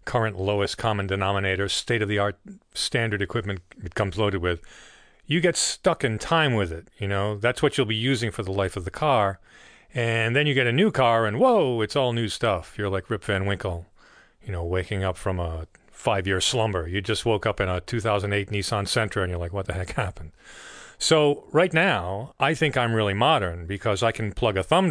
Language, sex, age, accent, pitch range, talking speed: English, male, 40-59, American, 95-125 Hz, 210 wpm